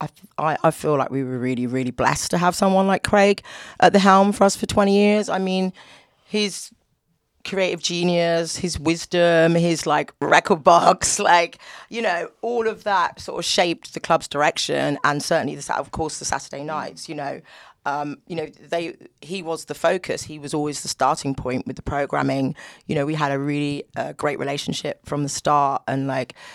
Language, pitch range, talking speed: English, 145-180 Hz, 195 wpm